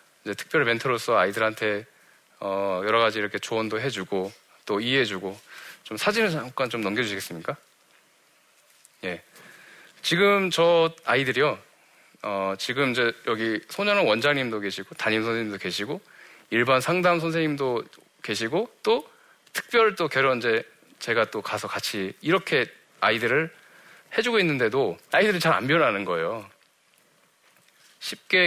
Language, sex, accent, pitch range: Korean, male, native, 110-165 Hz